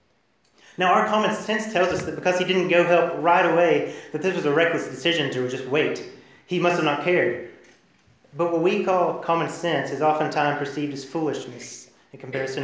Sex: male